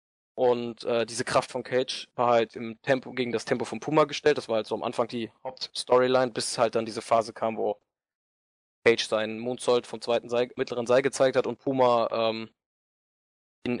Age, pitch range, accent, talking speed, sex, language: 20-39, 110-125 Hz, German, 190 wpm, male, German